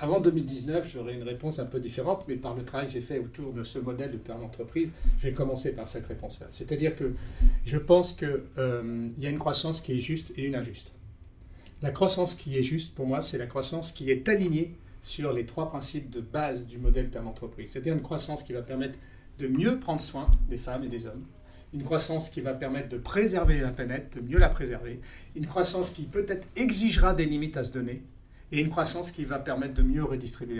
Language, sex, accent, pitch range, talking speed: French, male, French, 125-160 Hz, 220 wpm